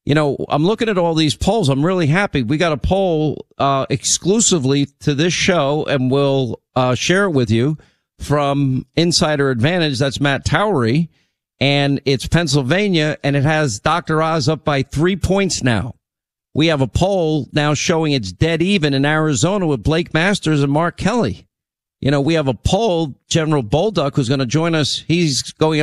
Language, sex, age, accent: English, male, 50-69, American